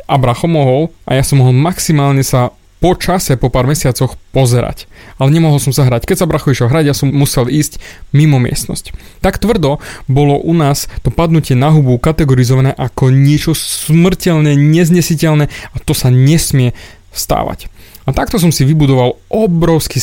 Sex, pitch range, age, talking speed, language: male, 125-155 Hz, 20-39, 165 wpm, Slovak